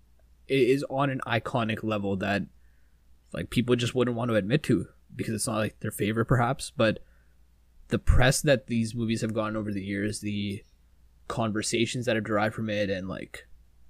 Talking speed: 180 wpm